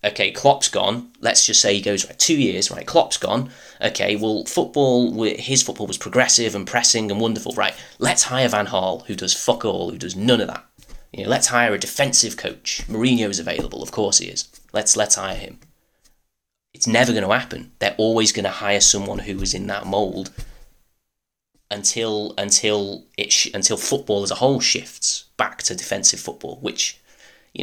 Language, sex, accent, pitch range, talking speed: English, male, British, 100-120 Hz, 190 wpm